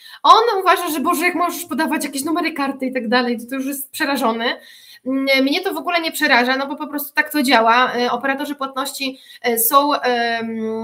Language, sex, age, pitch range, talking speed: Polish, female, 20-39, 245-290 Hz, 190 wpm